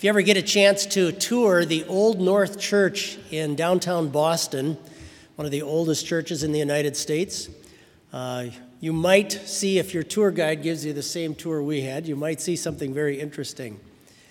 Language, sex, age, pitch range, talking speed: English, male, 40-59, 145-185 Hz, 190 wpm